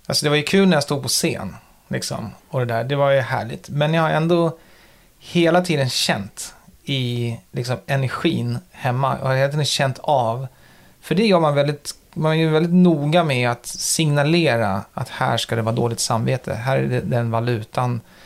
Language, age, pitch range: Swedish, 30-49, 120-165 Hz